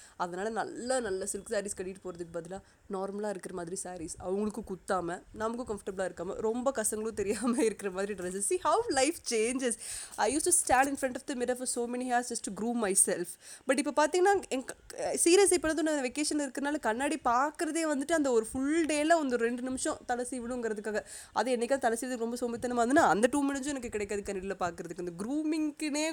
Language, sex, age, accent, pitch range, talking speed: Tamil, female, 20-39, native, 195-285 Hz, 185 wpm